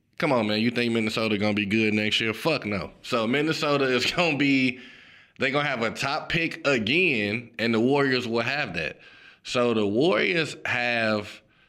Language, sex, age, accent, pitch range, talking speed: English, male, 20-39, American, 105-140 Hz, 200 wpm